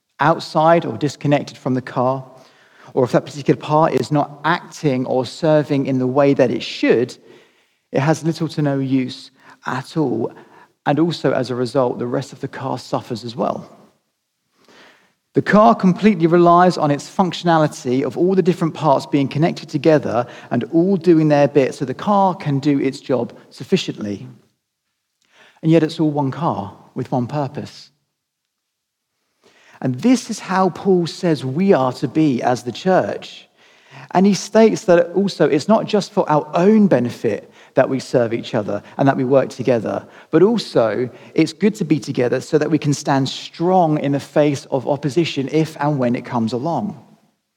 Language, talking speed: English, 175 wpm